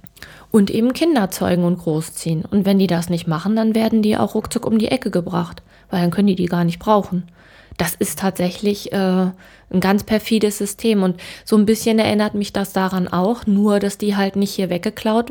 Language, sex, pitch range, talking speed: German, female, 185-220 Hz, 210 wpm